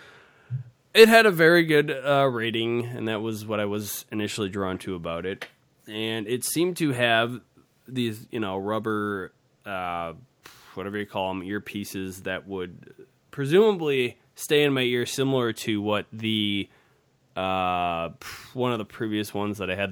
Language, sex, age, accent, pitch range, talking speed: English, male, 20-39, American, 95-130 Hz, 160 wpm